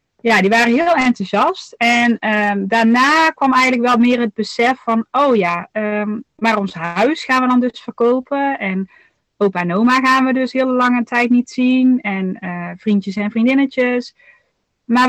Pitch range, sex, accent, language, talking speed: 205-255 Hz, female, Dutch, Dutch, 175 wpm